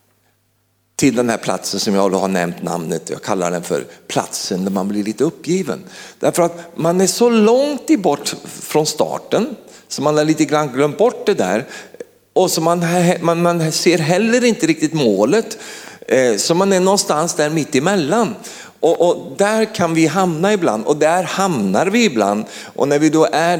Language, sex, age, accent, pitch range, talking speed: Swedish, male, 50-69, native, 110-170 Hz, 180 wpm